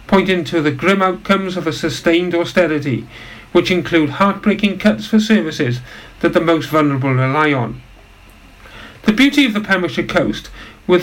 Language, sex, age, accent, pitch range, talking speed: English, male, 50-69, British, 150-190 Hz, 150 wpm